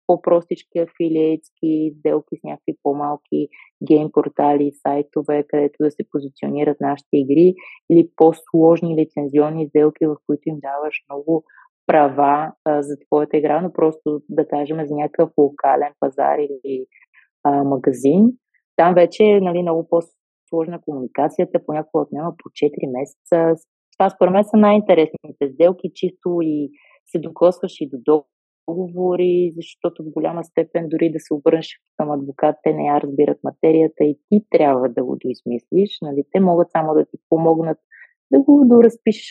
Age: 20-39